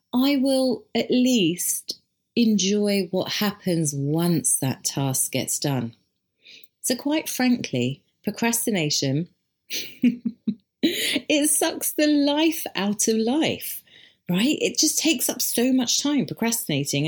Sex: female